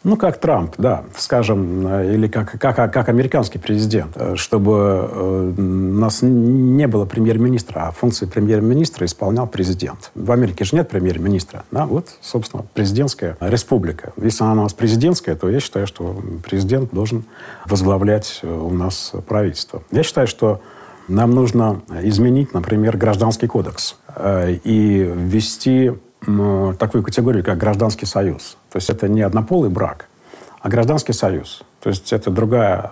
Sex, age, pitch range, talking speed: male, 50-69, 95-120 Hz, 140 wpm